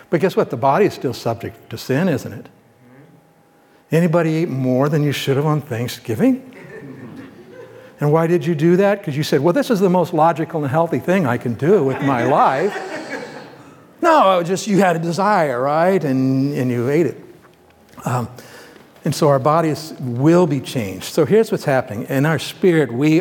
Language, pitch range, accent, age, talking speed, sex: English, 135-175 Hz, American, 60-79, 195 wpm, male